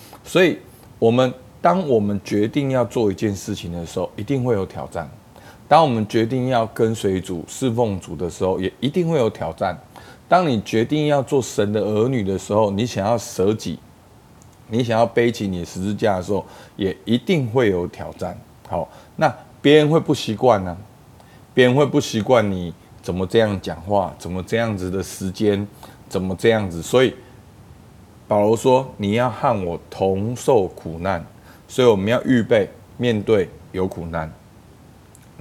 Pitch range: 95-125 Hz